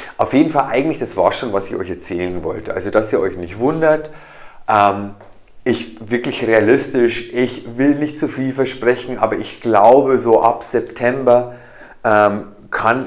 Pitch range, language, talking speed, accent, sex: 115-150 Hz, German, 165 wpm, German, male